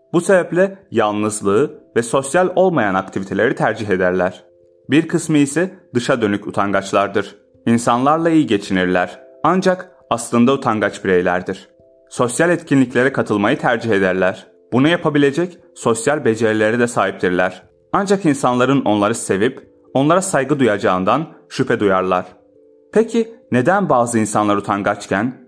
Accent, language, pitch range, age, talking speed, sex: native, Turkish, 100-150 Hz, 30-49, 110 wpm, male